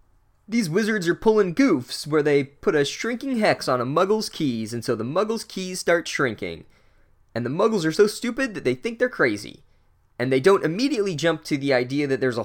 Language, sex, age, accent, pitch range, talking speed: English, male, 20-39, American, 105-150 Hz, 210 wpm